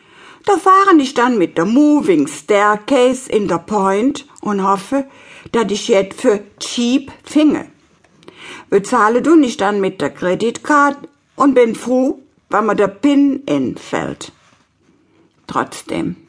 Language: German